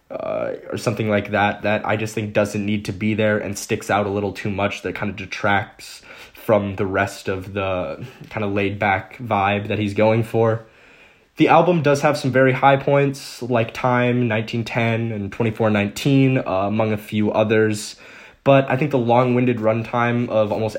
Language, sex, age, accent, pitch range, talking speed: English, male, 20-39, American, 100-115 Hz, 185 wpm